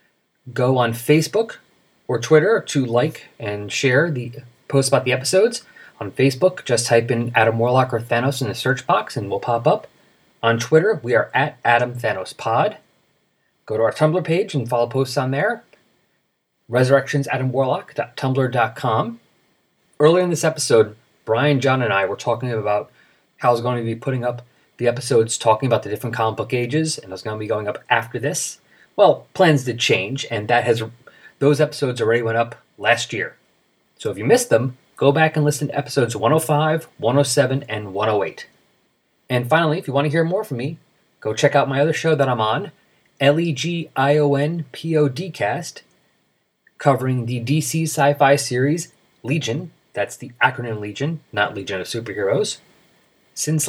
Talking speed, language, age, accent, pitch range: 170 wpm, English, 30-49, American, 120-150 Hz